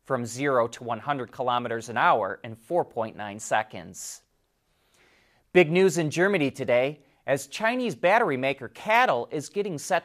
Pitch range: 120-175 Hz